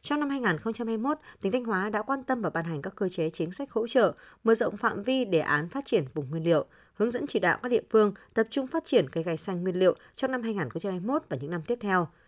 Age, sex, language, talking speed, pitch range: 20-39, female, Vietnamese, 265 wpm, 170-235 Hz